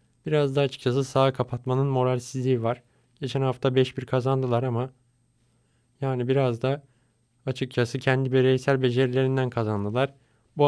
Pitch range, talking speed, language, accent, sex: 120-135 Hz, 120 wpm, Turkish, native, male